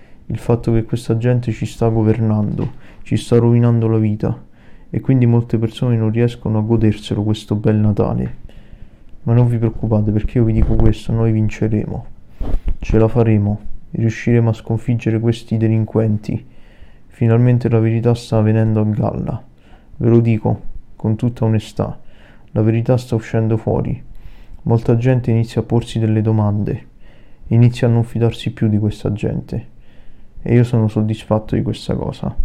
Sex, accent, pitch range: male, native, 110-115 Hz